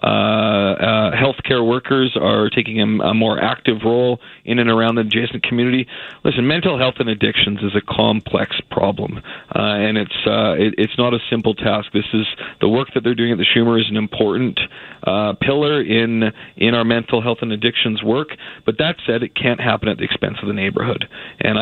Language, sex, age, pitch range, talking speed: English, male, 40-59, 110-125 Hz, 200 wpm